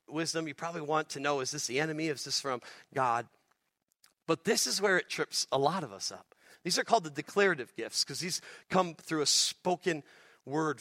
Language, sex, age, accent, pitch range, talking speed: English, male, 40-59, American, 150-205 Hz, 210 wpm